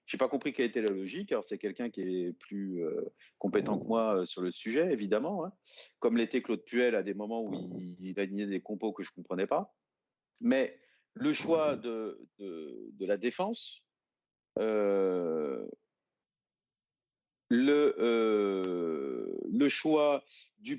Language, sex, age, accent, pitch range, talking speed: French, male, 40-59, French, 100-140 Hz, 160 wpm